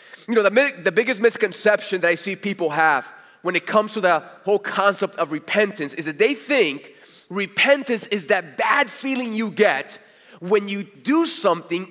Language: English